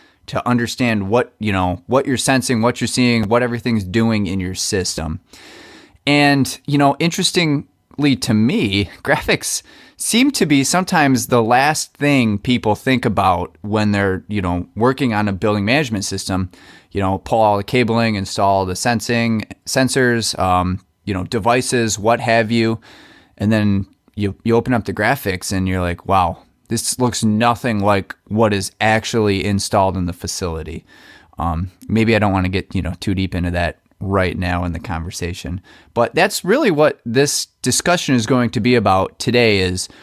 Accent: American